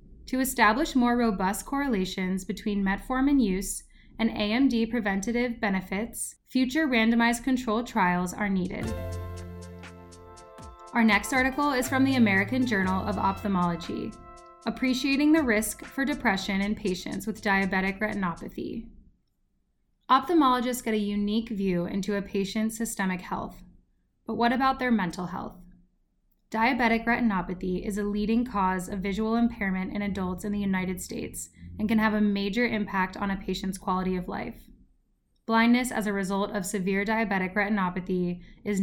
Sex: female